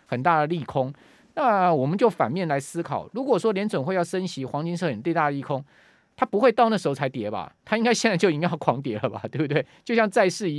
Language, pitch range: Chinese, 135-195 Hz